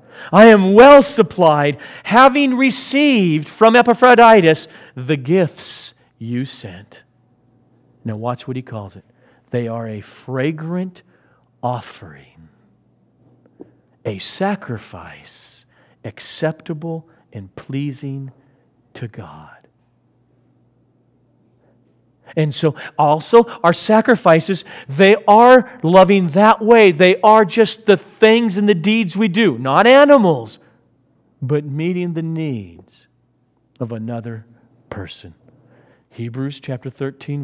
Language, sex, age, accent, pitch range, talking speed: English, male, 40-59, American, 125-195 Hz, 100 wpm